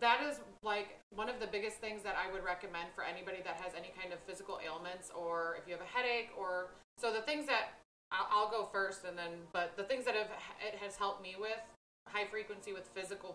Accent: American